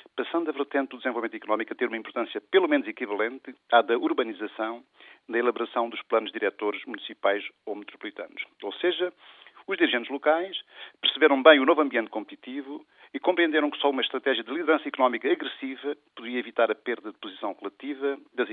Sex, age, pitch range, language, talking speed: male, 50-69, 125-195 Hz, Portuguese, 170 wpm